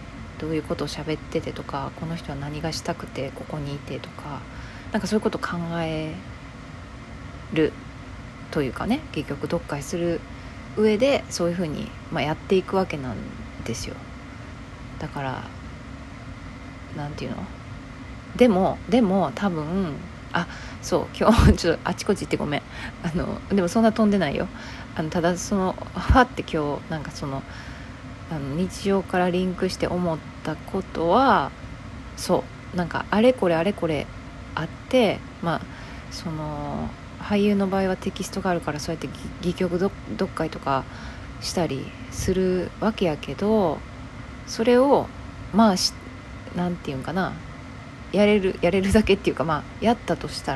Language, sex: Japanese, female